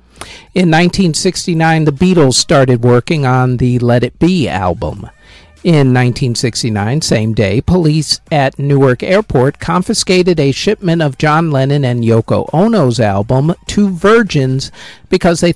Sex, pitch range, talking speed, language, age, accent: male, 110-155 Hz, 130 wpm, English, 50-69, American